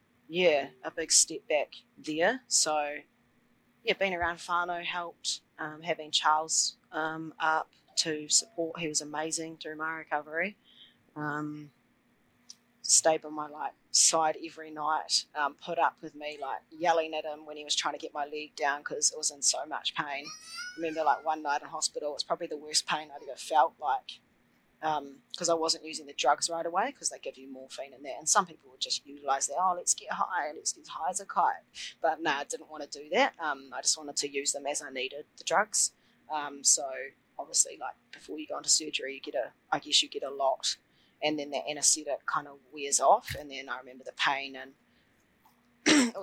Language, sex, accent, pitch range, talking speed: English, female, Australian, 150-170 Hz, 210 wpm